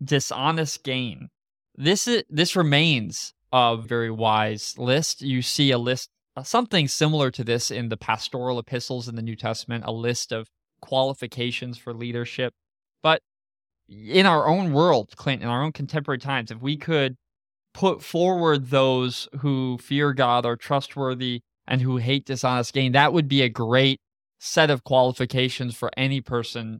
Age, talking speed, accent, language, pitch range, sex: 20-39, 155 wpm, American, English, 125-150 Hz, male